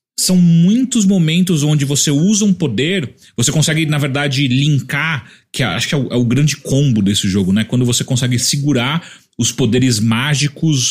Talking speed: 175 wpm